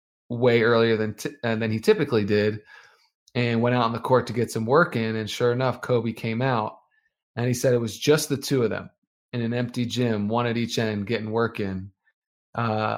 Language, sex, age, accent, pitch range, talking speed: English, male, 20-39, American, 110-125 Hz, 220 wpm